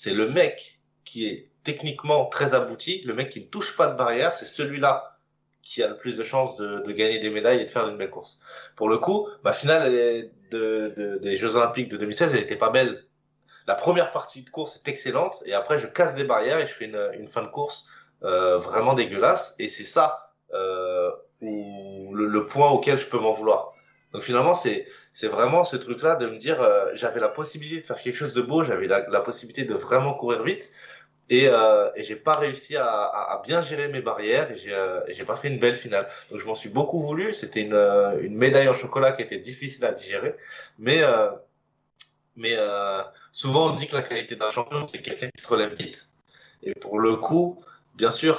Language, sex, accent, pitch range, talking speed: French, male, French, 110-165 Hz, 225 wpm